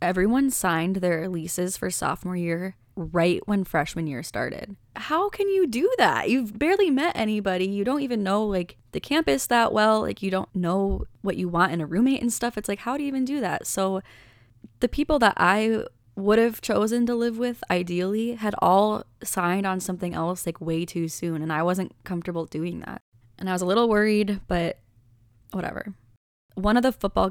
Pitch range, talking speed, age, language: 165-200 Hz, 200 wpm, 20-39, English